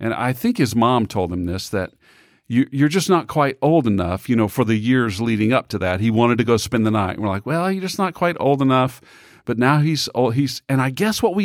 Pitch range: 125-200 Hz